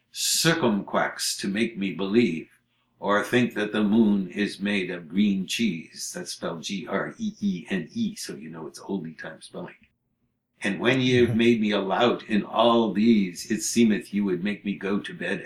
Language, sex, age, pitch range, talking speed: English, male, 60-79, 100-165 Hz, 175 wpm